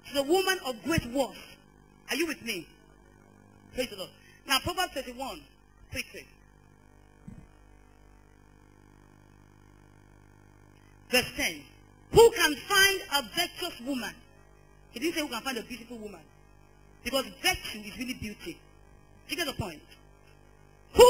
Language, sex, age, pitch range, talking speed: English, female, 40-59, 235-360 Hz, 130 wpm